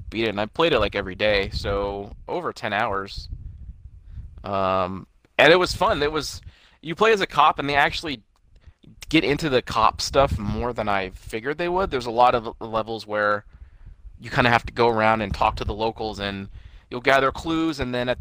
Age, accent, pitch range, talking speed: 20-39, American, 90-115 Hz, 210 wpm